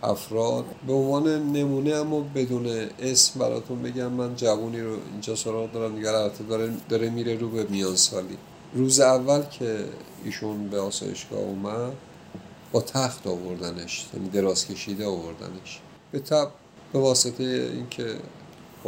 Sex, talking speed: male, 135 wpm